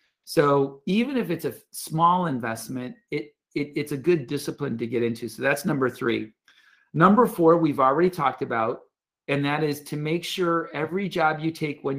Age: 40-59